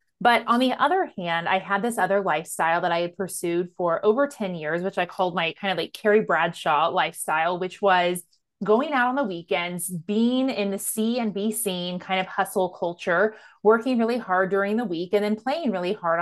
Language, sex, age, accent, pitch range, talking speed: English, female, 30-49, American, 180-230 Hz, 210 wpm